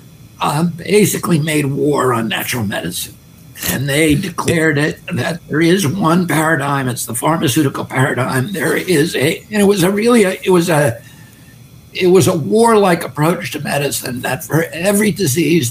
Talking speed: 165 wpm